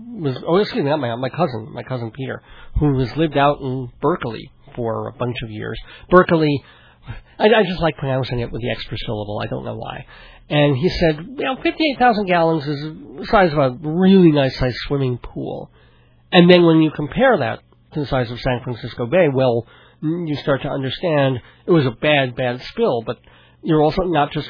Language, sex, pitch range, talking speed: English, male, 125-165 Hz, 205 wpm